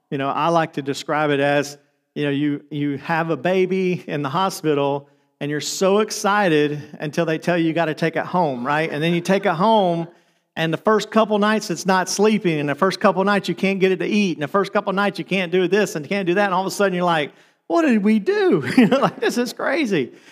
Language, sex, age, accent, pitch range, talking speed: English, male, 40-59, American, 160-200 Hz, 265 wpm